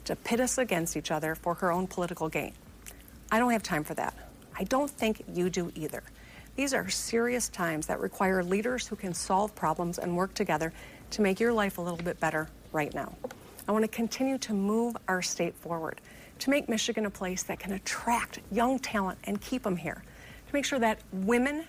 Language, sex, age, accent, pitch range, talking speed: English, female, 50-69, American, 175-235 Hz, 210 wpm